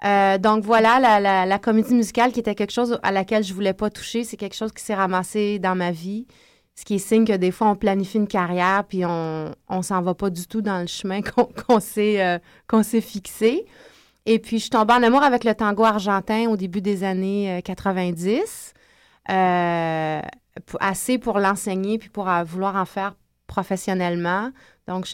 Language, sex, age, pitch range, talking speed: French, female, 30-49, 180-215 Hz, 200 wpm